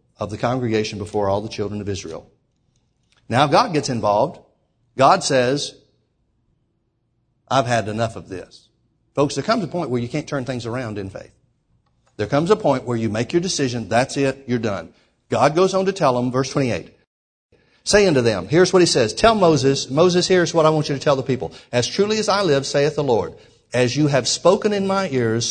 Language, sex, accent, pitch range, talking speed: English, male, American, 115-155 Hz, 210 wpm